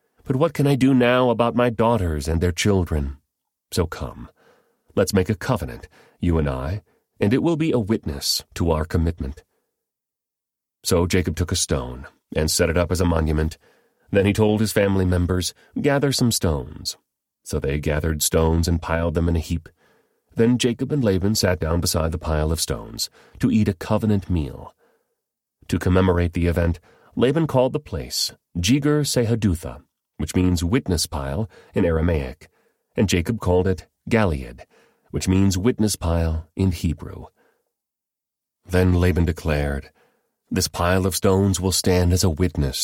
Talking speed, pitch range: 160 wpm, 80-105 Hz